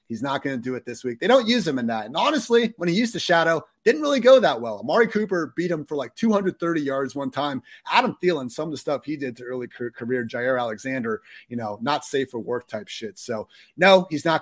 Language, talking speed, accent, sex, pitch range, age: English, 255 wpm, American, male, 125-175 Hz, 30-49